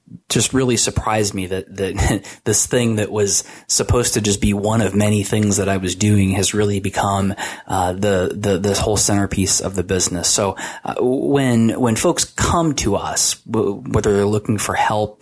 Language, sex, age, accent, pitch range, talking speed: English, male, 20-39, American, 95-110 Hz, 185 wpm